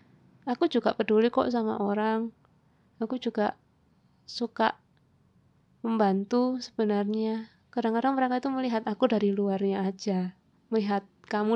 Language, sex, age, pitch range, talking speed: Indonesian, female, 20-39, 195-225 Hz, 110 wpm